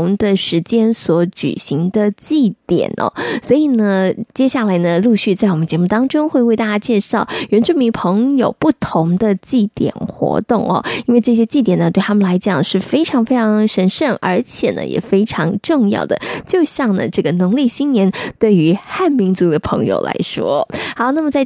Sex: female